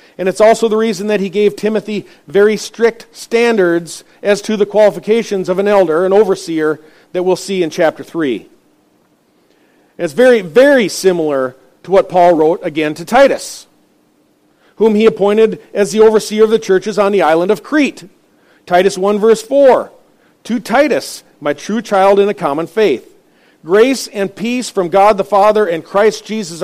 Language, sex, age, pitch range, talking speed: English, male, 50-69, 170-220 Hz, 170 wpm